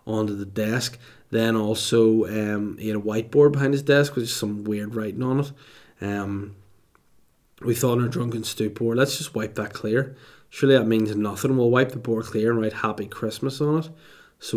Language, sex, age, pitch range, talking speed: English, male, 20-39, 110-120 Hz, 195 wpm